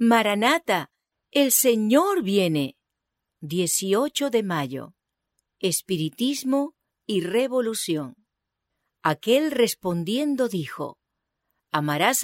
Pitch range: 180-255 Hz